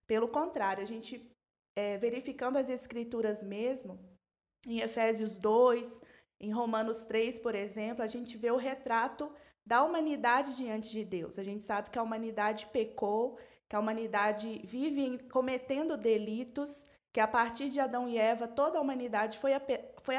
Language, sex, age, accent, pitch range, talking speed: Portuguese, female, 20-39, Brazilian, 220-275 Hz, 150 wpm